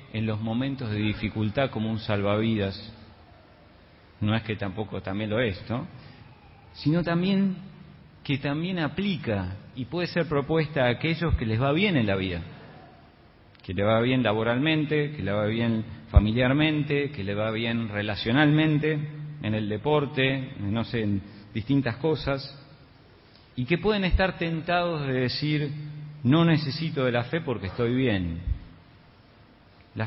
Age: 40-59